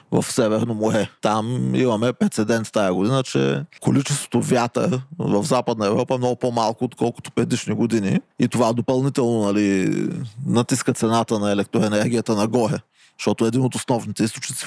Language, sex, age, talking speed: Bulgarian, male, 20-39, 145 wpm